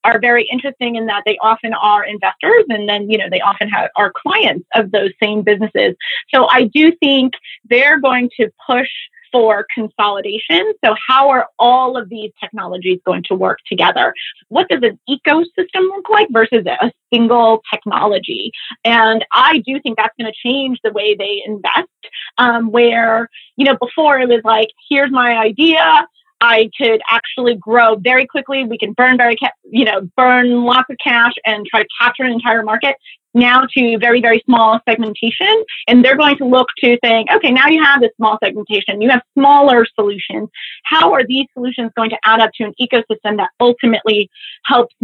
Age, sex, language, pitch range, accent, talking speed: 30-49, female, English, 220-260 Hz, American, 185 wpm